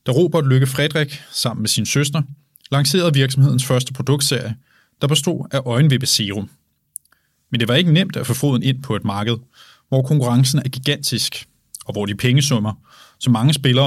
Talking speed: 175 wpm